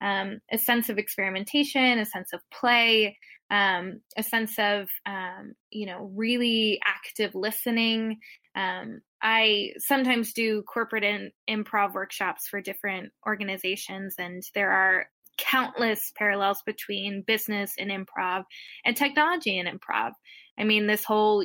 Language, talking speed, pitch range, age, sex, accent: English, 130 wpm, 195-220 Hz, 10-29, female, American